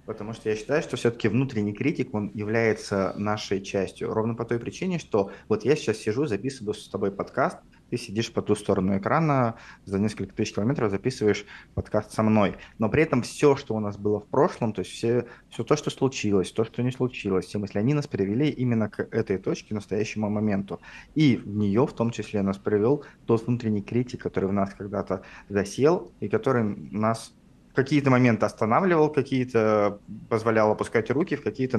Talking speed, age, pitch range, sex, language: 190 wpm, 20-39, 105-125 Hz, male, Russian